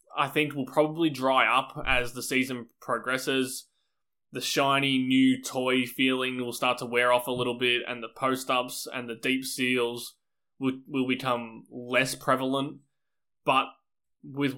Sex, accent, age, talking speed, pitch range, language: male, Australian, 20-39, 150 wpm, 125-145 Hz, English